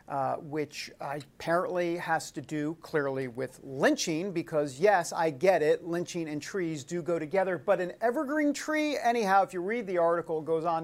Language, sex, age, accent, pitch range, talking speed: English, male, 50-69, American, 155-210 Hz, 175 wpm